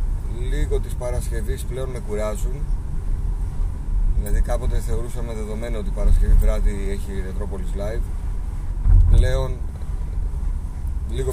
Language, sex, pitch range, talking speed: Greek, male, 75-105 Hz, 100 wpm